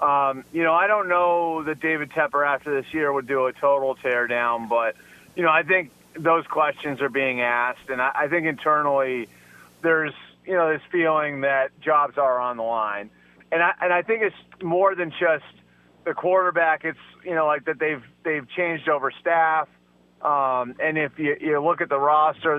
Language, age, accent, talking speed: English, 30-49, American, 195 wpm